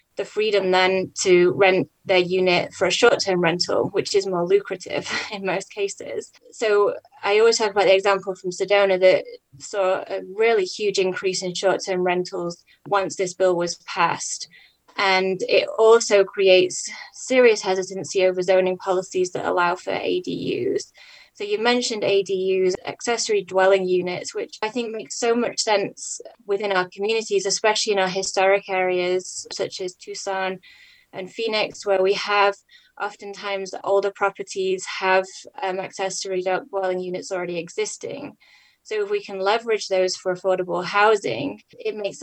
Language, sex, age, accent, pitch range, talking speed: English, female, 20-39, British, 185-220 Hz, 150 wpm